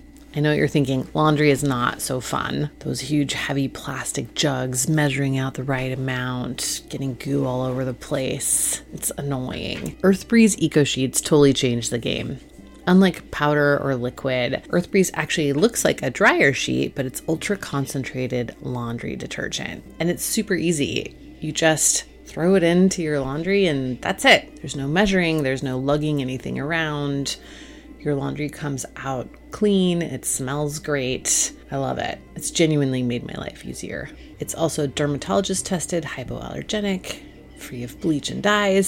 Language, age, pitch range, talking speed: English, 30-49, 130-170 Hz, 155 wpm